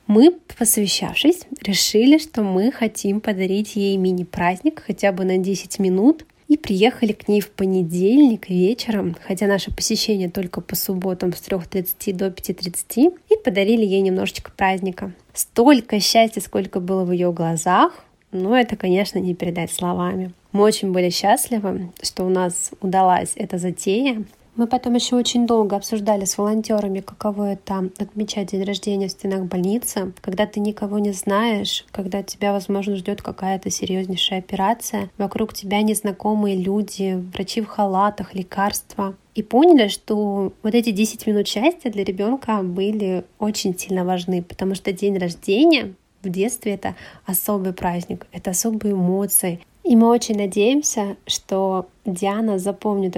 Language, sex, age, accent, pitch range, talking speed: Russian, female, 20-39, native, 190-215 Hz, 145 wpm